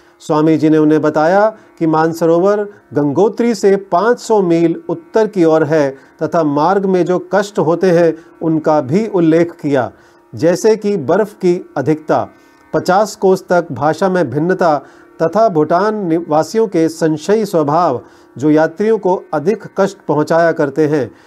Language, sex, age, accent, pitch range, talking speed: Hindi, male, 40-59, native, 155-190 Hz, 140 wpm